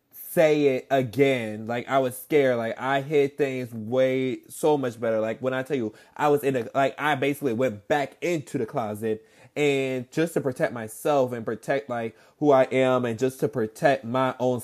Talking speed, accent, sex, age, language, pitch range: 195 wpm, American, male, 20-39, English, 115-140 Hz